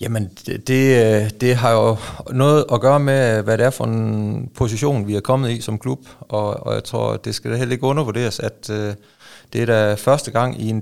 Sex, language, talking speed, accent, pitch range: male, Danish, 220 wpm, native, 105-130 Hz